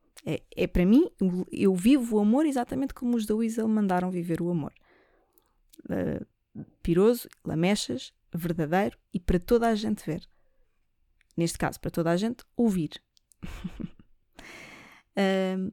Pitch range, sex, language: 170-225 Hz, female, Portuguese